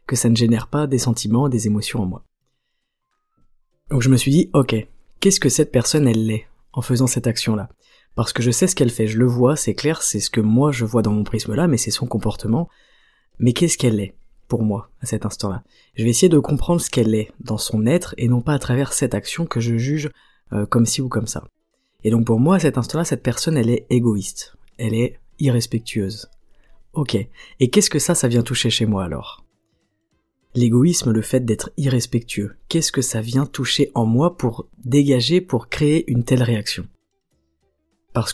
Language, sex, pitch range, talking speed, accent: French, female, 115-140 Hz, 210 wpm, French